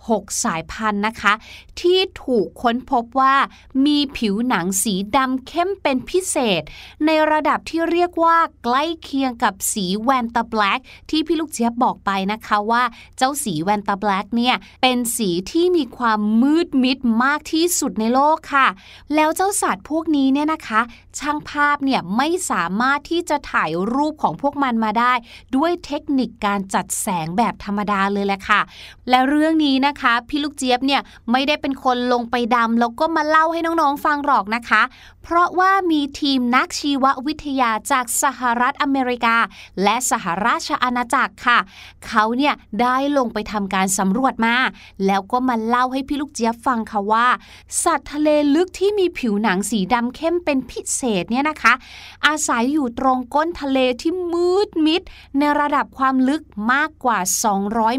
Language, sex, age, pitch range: Thai, female, 20-39, 225-295 Hz